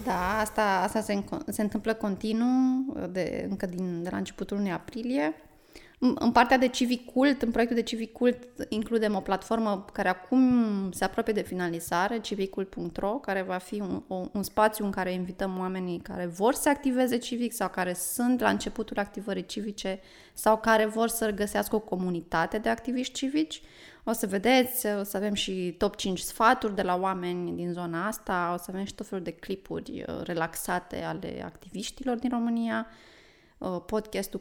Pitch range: 190-240 Hz